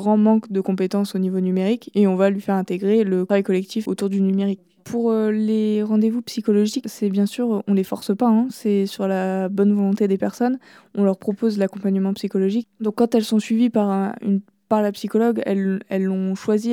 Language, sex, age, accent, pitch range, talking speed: French, female, 20-39, French, 195-215 Hz, 210 wpm